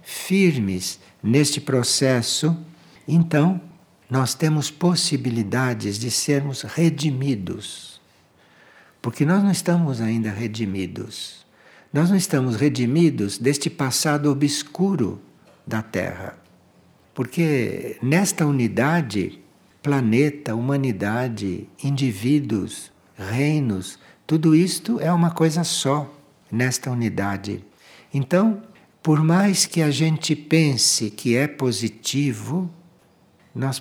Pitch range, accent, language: 120-165 Hz, Brazilian, Portuguese